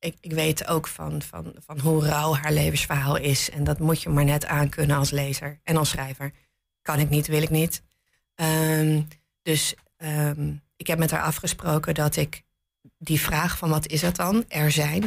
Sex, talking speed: female, 195 wpm